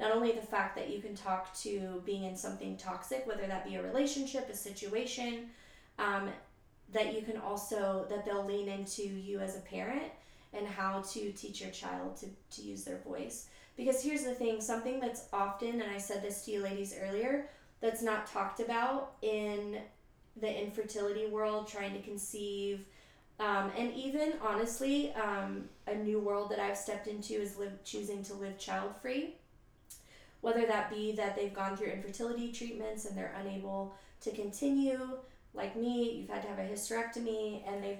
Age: 20-39